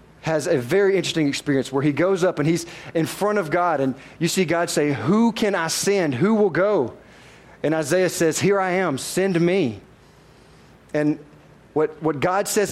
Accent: American